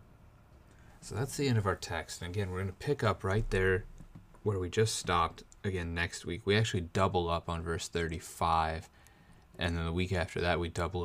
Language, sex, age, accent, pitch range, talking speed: English, male, 30-49, American, 85-110 Hz, 205 wpm